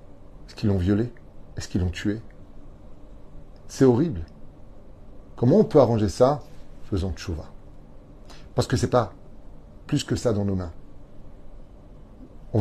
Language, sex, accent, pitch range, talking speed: French, male, French, 95-115 Hz, 140 wpm